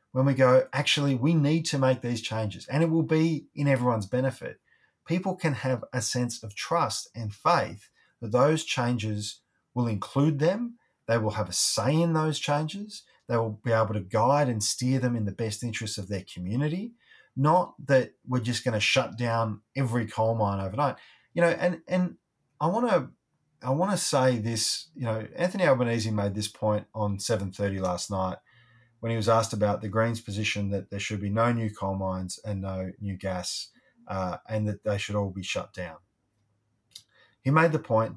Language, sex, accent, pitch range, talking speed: English, male, Australian, 105-135 Hz, 195 wpm